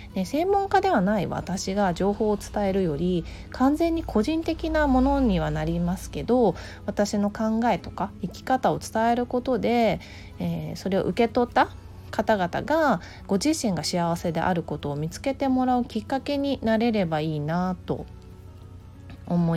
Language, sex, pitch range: Japanese, female, 160-235 Hz